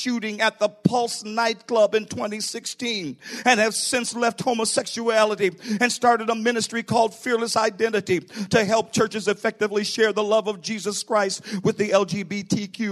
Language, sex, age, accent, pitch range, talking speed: English, male, 50-69, American, 195-220 Hz, 150 wpm